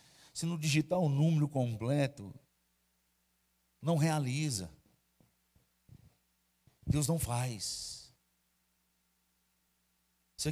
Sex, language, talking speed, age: male, Portuguese, 70 wpm, 50-69